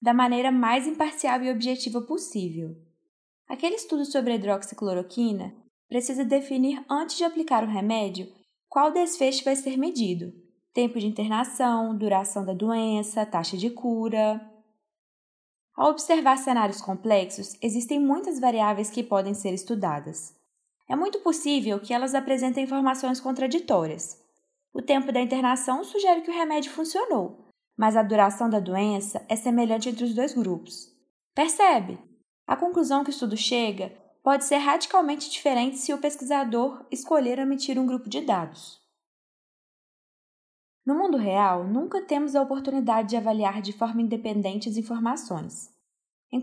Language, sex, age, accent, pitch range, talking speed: Portuguese, female, 20-39, Brazilian, 220-285 Hz, 140 wpm